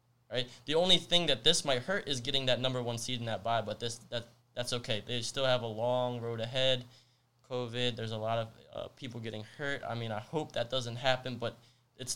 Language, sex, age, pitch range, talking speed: English, male, 20-39, 120-135 Hz, 230 wpm